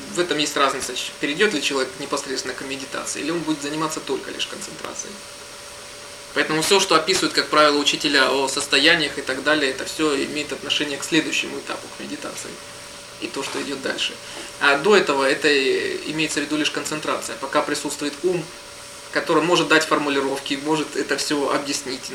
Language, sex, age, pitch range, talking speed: Russian, male, 20-39, 140-160 Hz, 170 wpm